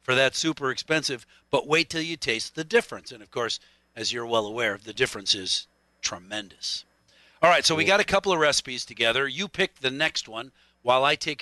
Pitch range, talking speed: 115-150 Hz, 210 wpm